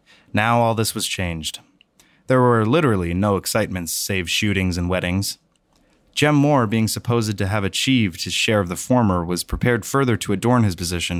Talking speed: 175 wpm